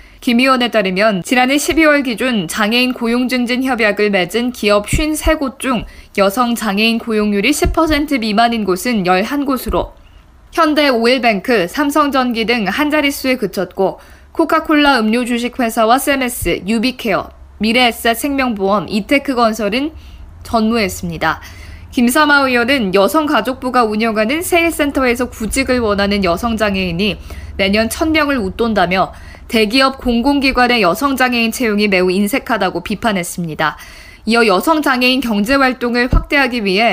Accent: native